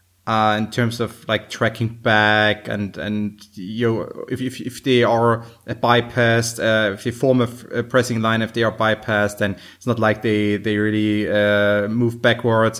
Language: English